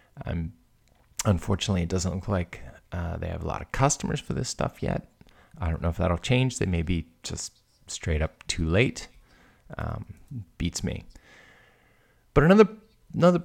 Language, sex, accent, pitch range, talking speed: English, male, American, 90-110 Hz, 170 wpm